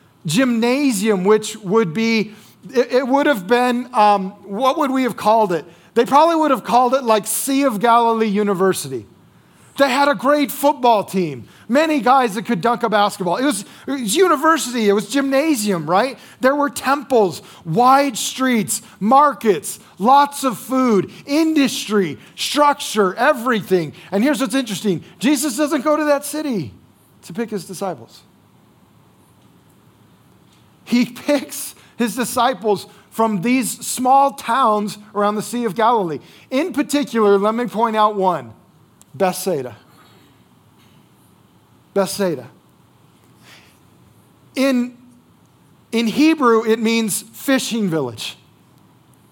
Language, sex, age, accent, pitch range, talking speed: English, male, 40-59, American, 205-265 Hz, 125 wpm